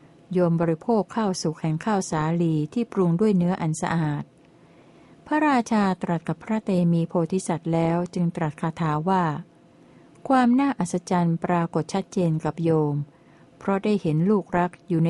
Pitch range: 160-195 Hz